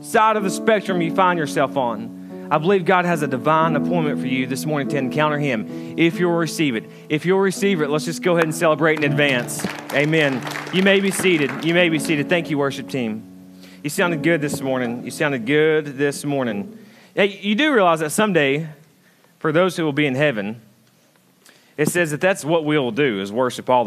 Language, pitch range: English, 110-155 Hz